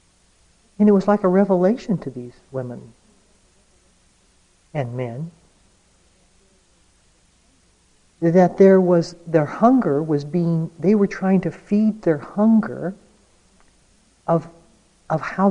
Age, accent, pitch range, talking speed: 60-79, American, 155-200 Hz, 110 wpm